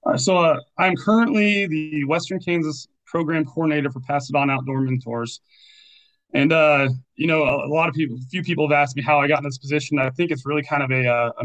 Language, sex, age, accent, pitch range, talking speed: English, male, 30-49, American, 125-150 Hz, 220 wpm